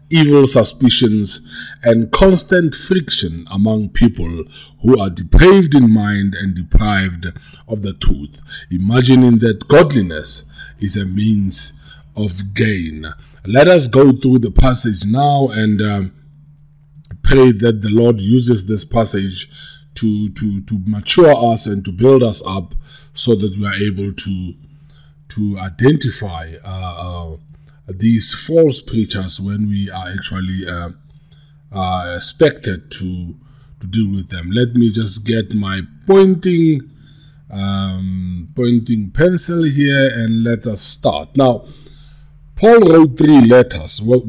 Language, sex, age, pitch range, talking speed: English, male, 50-69, 95-135 Hz, 130 wpm